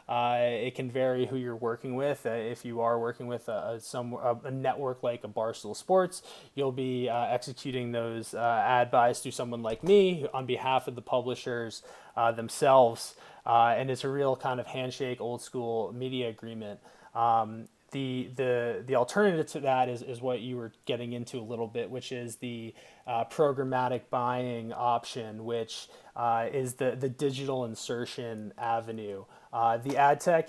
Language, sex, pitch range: English, male, 115-130 Hz